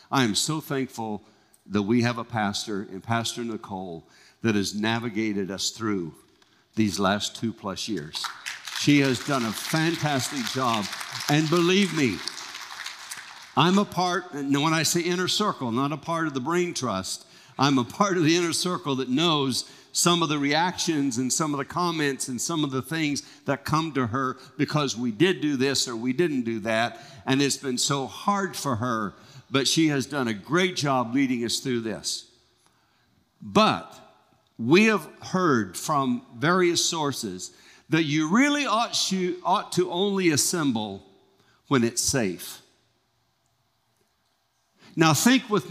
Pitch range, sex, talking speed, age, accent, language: 120-175 Hz, male, 160 wpm, 60-79, American, English